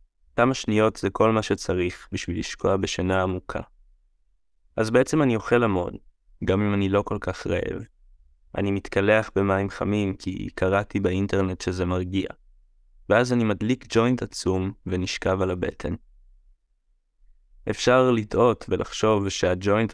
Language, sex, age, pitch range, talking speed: Hebrew, male, 20-39, 90-105 Hz, 130 wpm